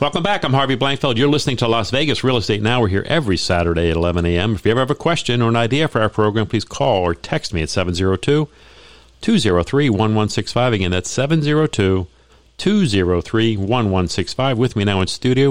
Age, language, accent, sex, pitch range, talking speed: 50-69, English, American, male, 95-125 Hz, 180 wpm